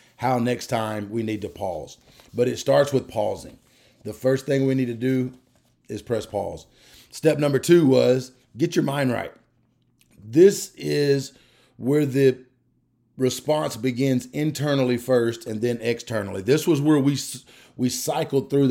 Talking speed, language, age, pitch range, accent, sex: 155 wpm, English, 30-49, 120-140 Hz, American, male